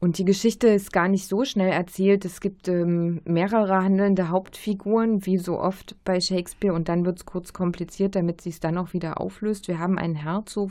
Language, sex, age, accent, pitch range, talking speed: German, female, 20-39, German, 165-195 Hz, 200 wpm